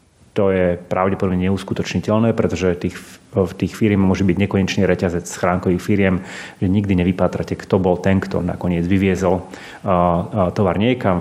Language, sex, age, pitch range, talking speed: Slovak, male, 30-49, 90-110 Hz, 145 wpm